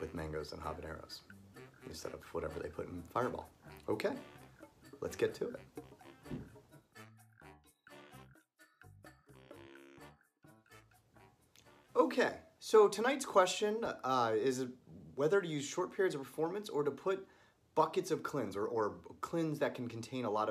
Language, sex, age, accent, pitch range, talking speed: English, male, 30-49, American, 95-150 Hz, 125 wpm